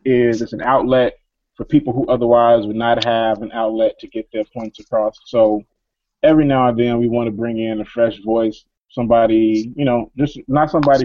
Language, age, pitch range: English, 30-49, 110-120 Hz